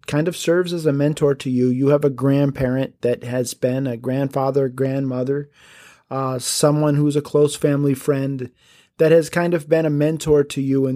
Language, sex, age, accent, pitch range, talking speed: English, male, 30-49, American, 135-165 Hz, 190 wpm